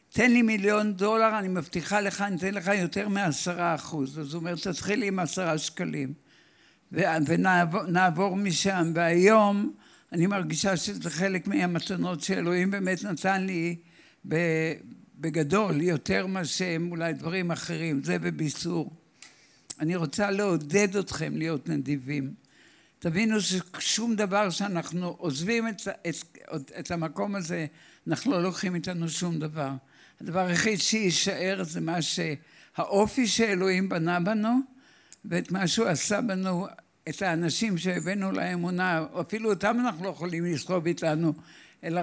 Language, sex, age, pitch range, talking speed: Hebrew, male, 60-79, 165-200 Hz, 125 wpm